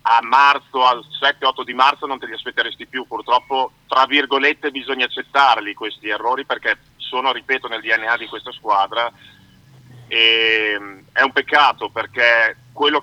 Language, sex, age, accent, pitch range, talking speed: Italian, male, 40-59, native, 115-135 Hz, 145 wpm